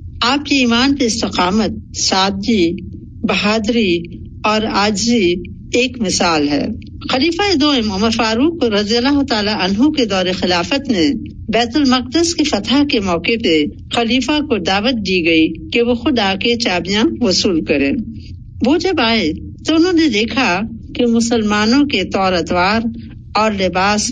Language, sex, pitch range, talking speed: Urdu, female, 195-260 Hz, 130 wpm